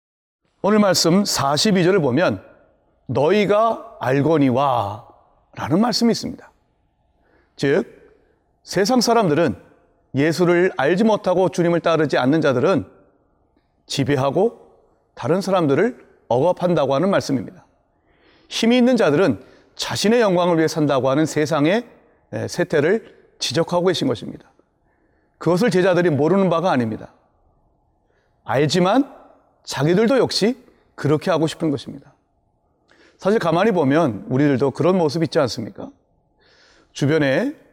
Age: 30-49